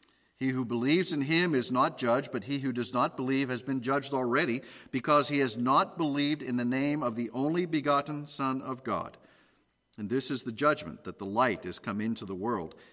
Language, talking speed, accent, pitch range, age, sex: English, 215 wpm, American, 115-150 Hz, 50-69, male